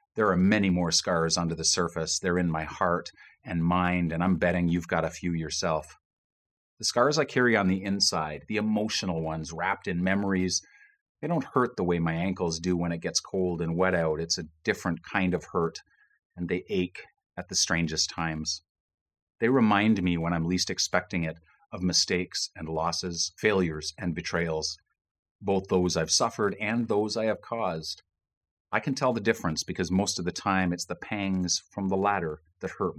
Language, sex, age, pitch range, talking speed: English, male, 40-59, 85-95 Hz, 190 wpm